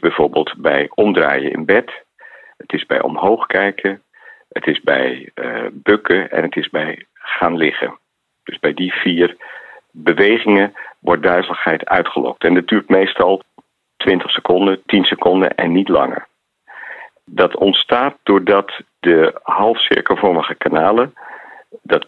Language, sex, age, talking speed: Dutch, male, 50-69, 130 wpm